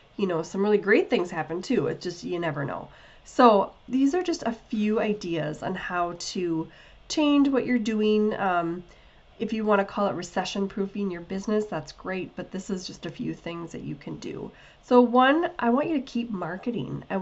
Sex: female